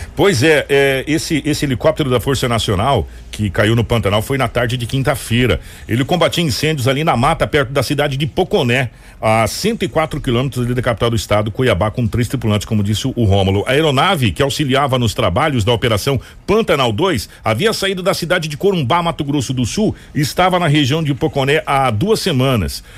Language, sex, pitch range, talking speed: Portuguese, male, 105-145 Hz, 195 wpm